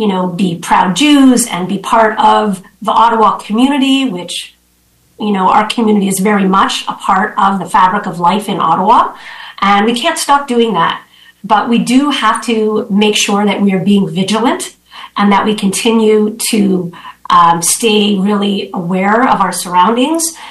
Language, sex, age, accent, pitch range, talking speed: English, female, 40-59, American, 195-230 Hz, 175 wpm